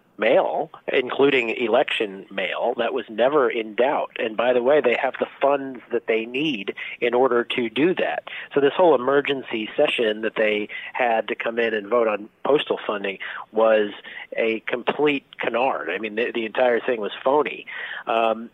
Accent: American